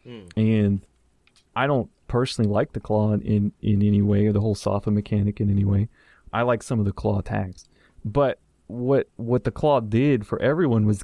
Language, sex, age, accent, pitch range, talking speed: English, male, 30-49, American, 105-120 Hz, 190 wpm